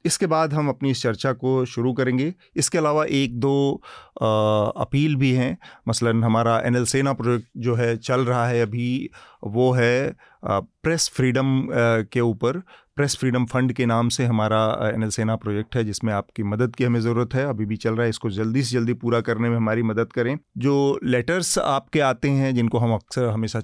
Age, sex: 30-49, male